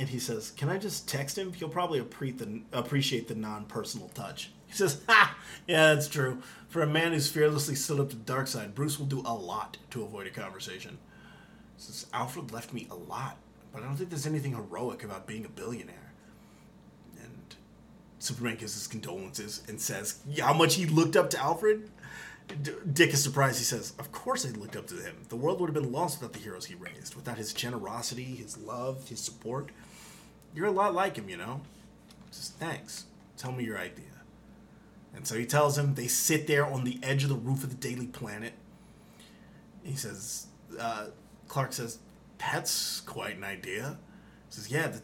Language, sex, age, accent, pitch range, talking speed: English, male, 30-49, American, 125-160 Hz, 200 wpm